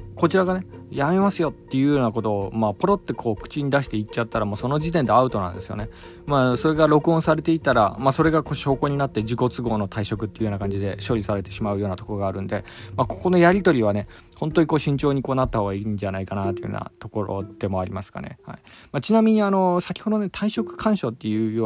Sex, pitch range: male, 105-150 Hz